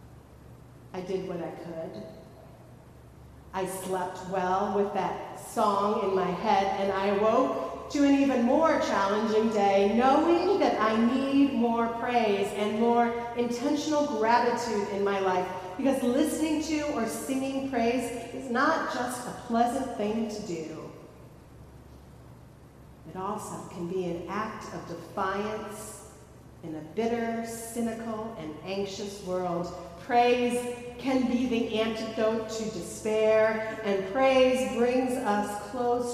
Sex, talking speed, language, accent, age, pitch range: female, 130 wpm, English, American, 40-59, 175-225 Hz